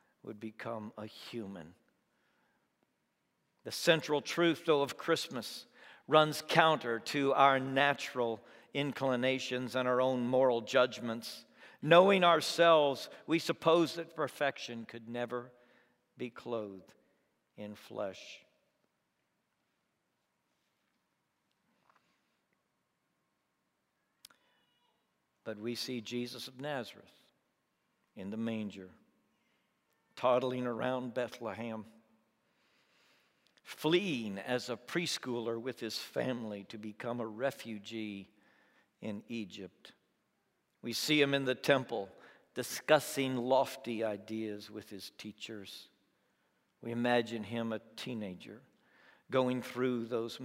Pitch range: 110-130 Hz